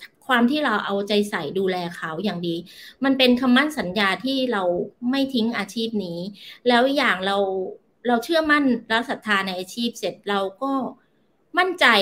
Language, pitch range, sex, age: Thai, 195-245 Hz, female, 30-49